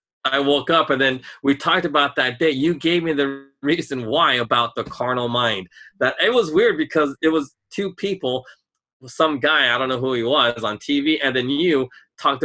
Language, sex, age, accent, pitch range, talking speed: English, male, 30-49, American, 125-155 Hz, 205 wpm